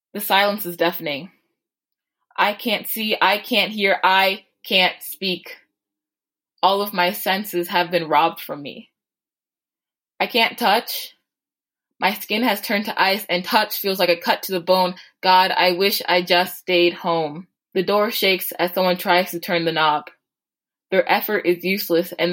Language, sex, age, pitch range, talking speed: English, female, 20-39, 175-205 Hz, 165 wpm